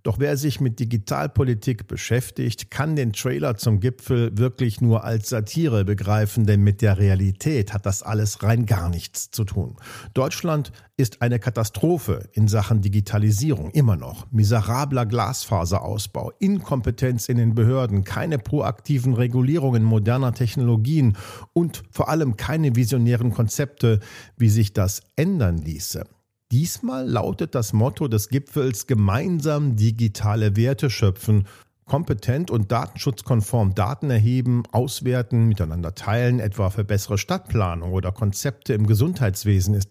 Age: 50-69